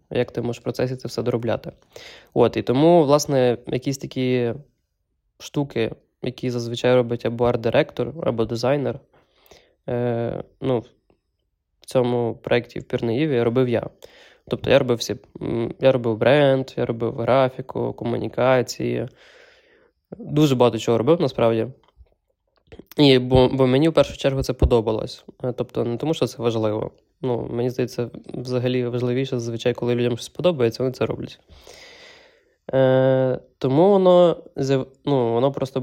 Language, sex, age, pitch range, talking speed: Ukrainian, male, 20-39, 120-140 Hz, 135 wpm